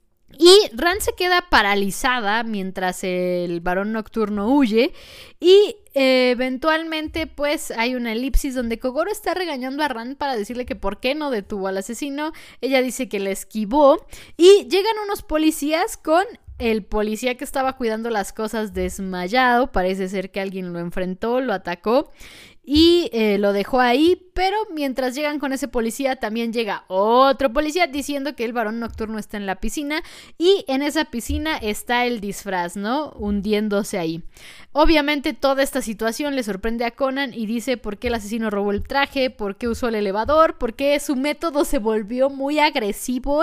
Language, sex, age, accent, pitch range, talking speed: Spanish, female, 20-39, Mexican, 210-295 Hz, 165 wpm